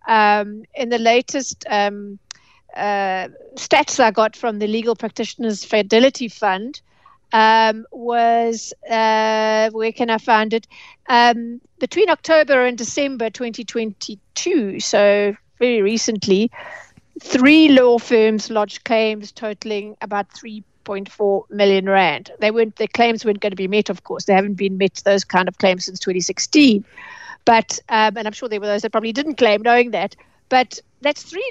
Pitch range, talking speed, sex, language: 210-245 Hz, 150 wpm, female, English